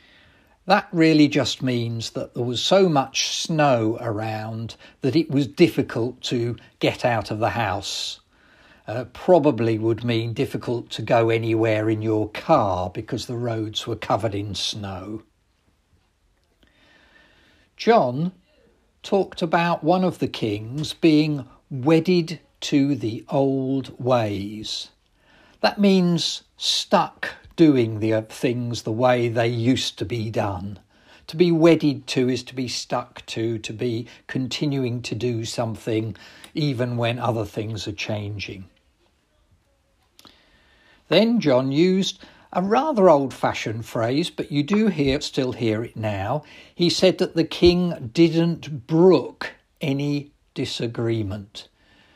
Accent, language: British, English